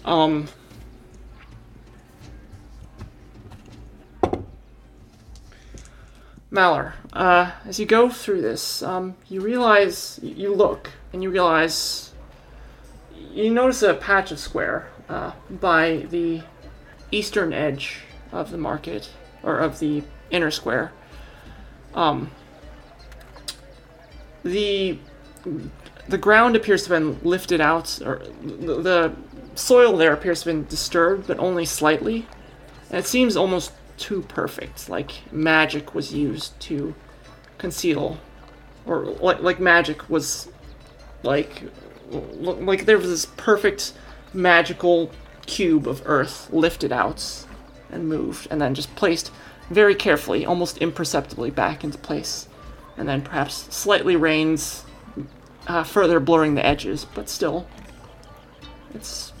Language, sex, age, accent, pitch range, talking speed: English, male, 30-49, American, 155-190 Hz, 115 wpm